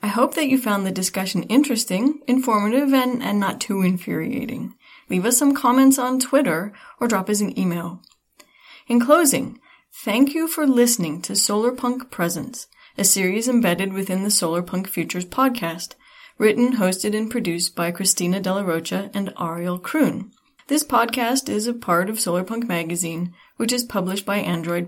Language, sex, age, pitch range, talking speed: English, female, 30-49, 175-245 Hz, 165 wpm